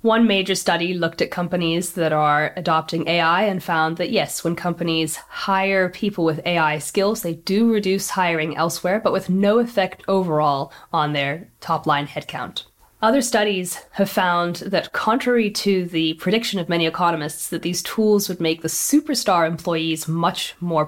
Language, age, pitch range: English, 10-29, 160-195 Hz